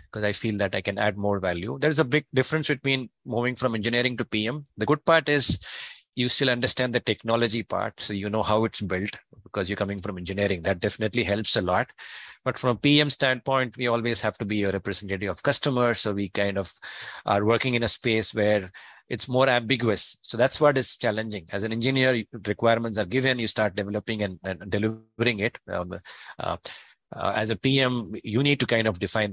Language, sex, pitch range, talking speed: English, male, 100-125 Hz, 205 wpm